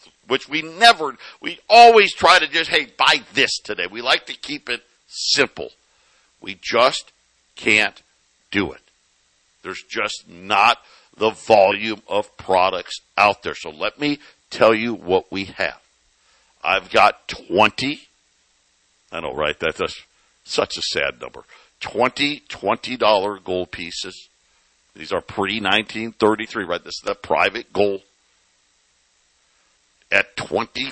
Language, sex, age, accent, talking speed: English, male, 60-79, American, 130 wpm